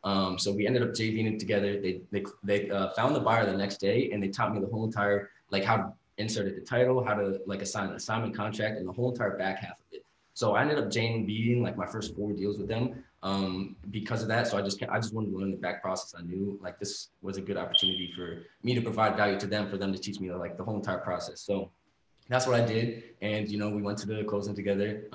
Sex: male